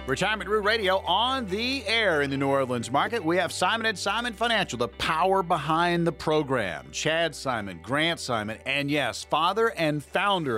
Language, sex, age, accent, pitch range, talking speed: English, male, 40-59, American, 125-185 Hz, 175 wpm